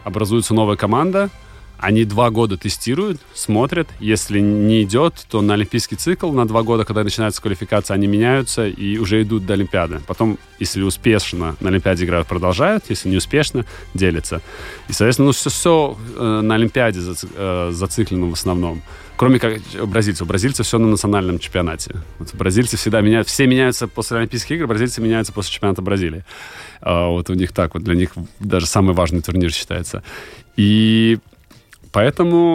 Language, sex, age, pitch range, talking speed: Russian, male, 30-49, 95-120 Hz, 155 wpm